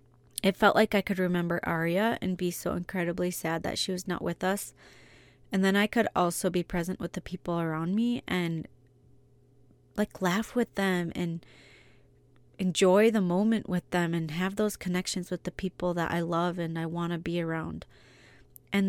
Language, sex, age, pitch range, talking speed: English, female, 20-39, 160-190 Hz, 185 wpm